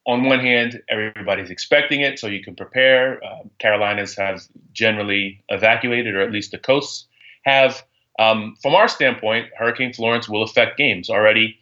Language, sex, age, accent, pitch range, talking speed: English, male, 30-49, American, 110-130 Hz, 160 wpm